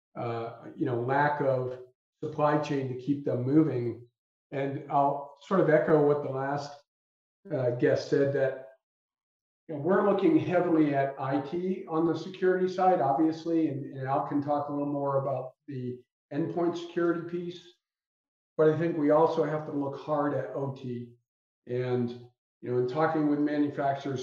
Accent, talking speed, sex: American, 160 wpm, male